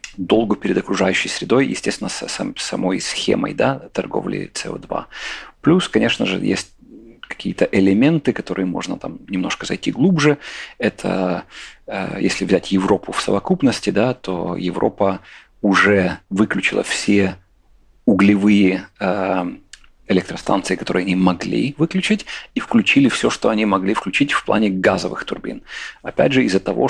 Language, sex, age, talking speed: Russian, male, 40-59, 125 wpm